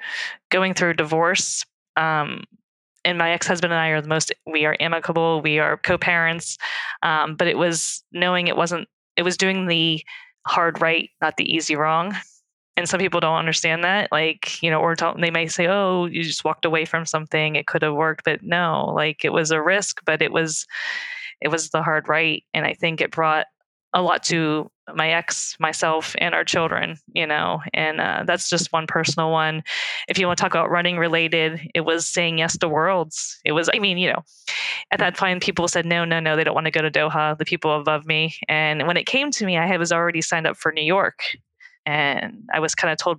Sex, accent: female, American